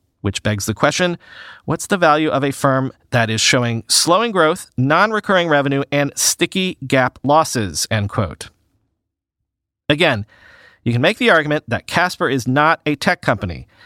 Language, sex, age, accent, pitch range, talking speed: English, male, 40-59, American, 110-155 Hz, 155 wpm